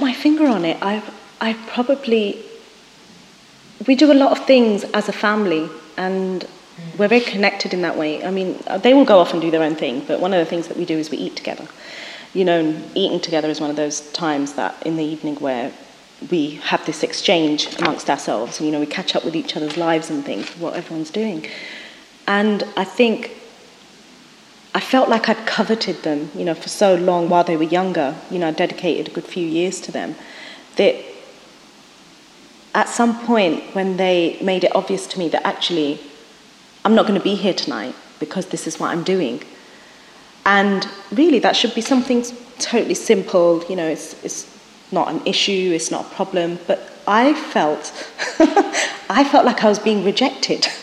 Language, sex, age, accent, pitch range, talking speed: English, female, 30-49, British, 165-230 Hz, 190 wpm